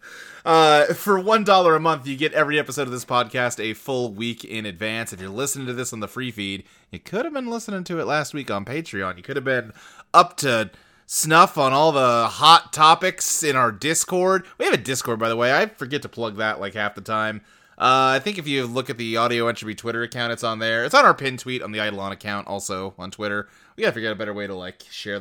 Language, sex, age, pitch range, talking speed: English, male, 30-49, 110-160 Hz, 250 wpm